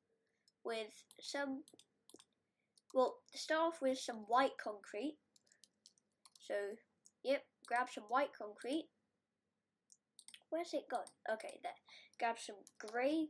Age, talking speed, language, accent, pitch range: 20-39, 105 wpm, English, British, 220-280 Hz